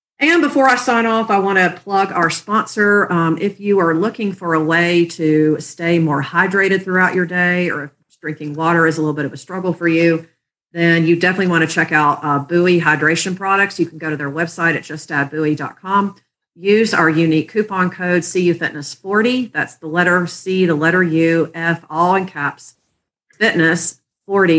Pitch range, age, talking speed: 155-185 Hz, 40-59, 190 wpm